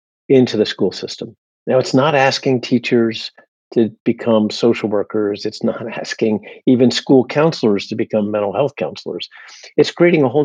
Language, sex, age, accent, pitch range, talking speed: English, male, 50-69, American, 105-130 Hz, 160 wpm